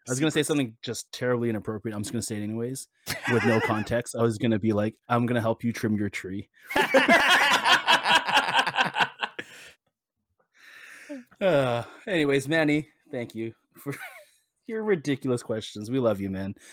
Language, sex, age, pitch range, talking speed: English, male, 20-39, 105-125 Hz, 165 wpm